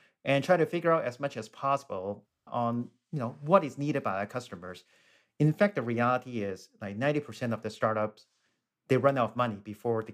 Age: 40-59